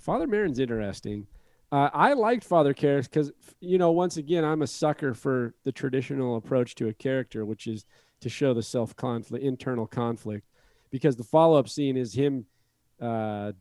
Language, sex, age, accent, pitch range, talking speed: English, male, 40-59, American, 115-140 Hz, 170 wpm